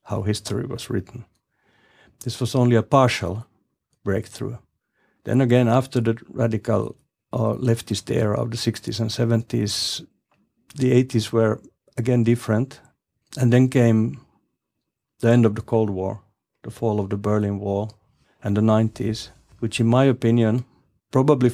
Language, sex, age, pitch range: Finnish, male, 50-69, 105-120 Hz